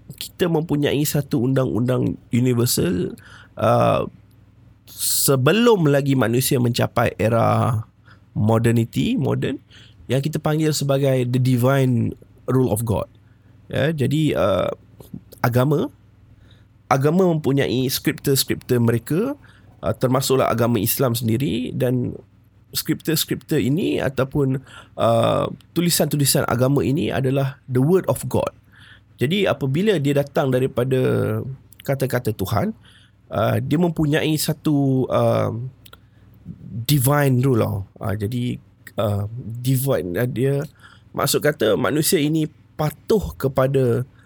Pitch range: 115-145 Hz